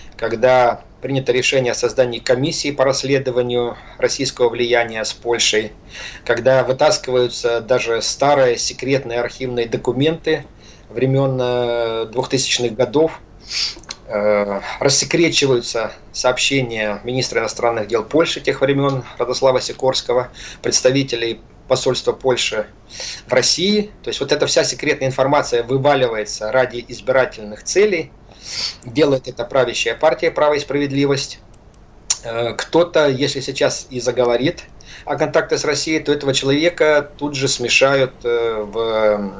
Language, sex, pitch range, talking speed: Russian, male, 115-140 Hz, 110 wpm